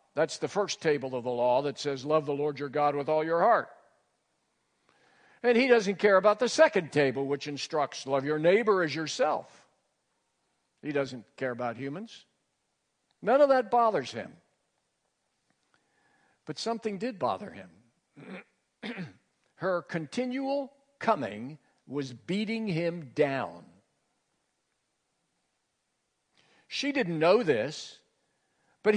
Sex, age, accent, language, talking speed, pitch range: male, 60-79, American, English, 125 wpm, 145-225 Hz